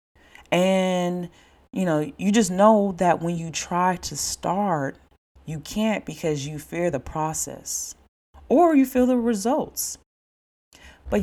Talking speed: 135 wpm